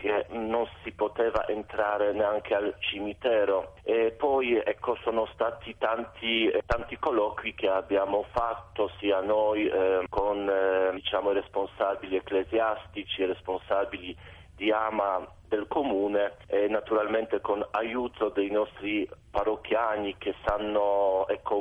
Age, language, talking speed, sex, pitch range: 40-59, Italian, 120 wpm, male, 100-115 Hz